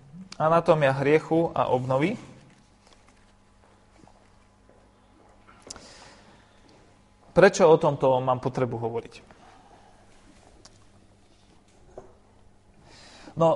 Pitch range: 125-160 Hz